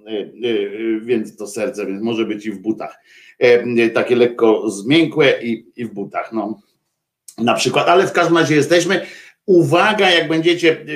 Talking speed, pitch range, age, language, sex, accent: 155 wpm, 130-180 Hz, 50-69, Polish, male, native